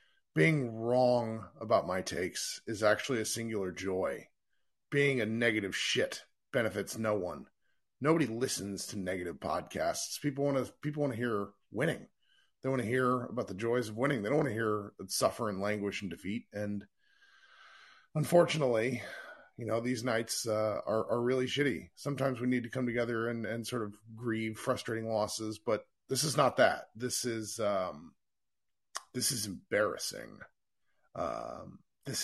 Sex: male